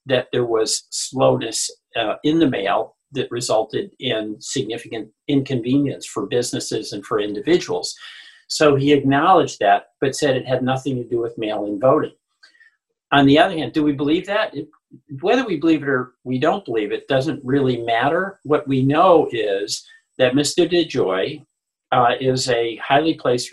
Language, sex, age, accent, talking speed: English, male, 50-69, American, 165 wpm